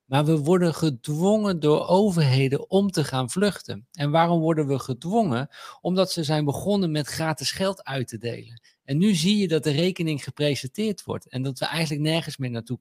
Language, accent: Dutch, Dutch